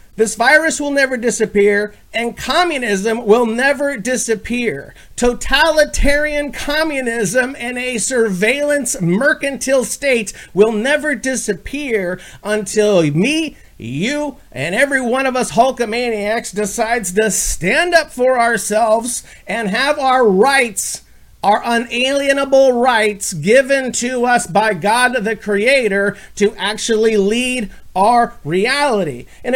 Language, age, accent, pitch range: English, 40-59, American, 215-265 Hz